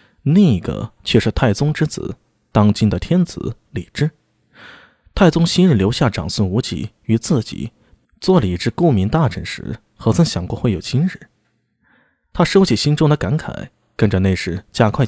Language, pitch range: Chinese, 105-155 Hz